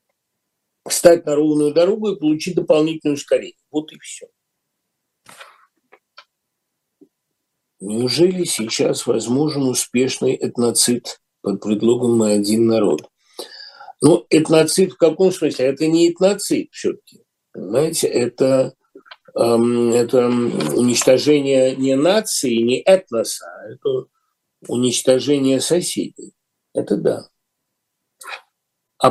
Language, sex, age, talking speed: Russian, male, 50-69, 90 wpm